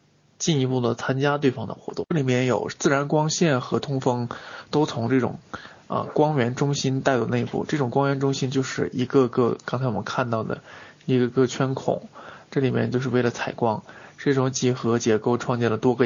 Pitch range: 120-140 Hz